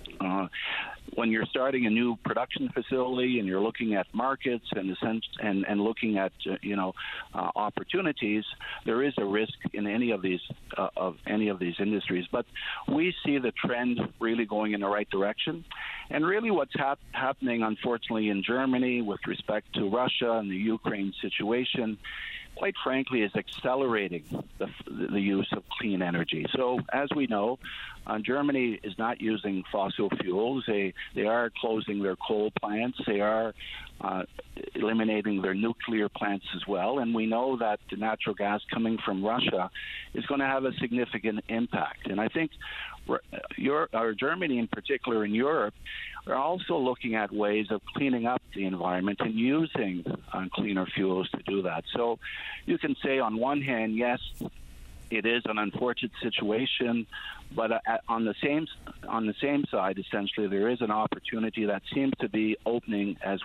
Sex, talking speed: male, 170 wpm